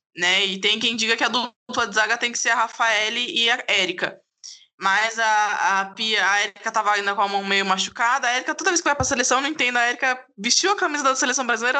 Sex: female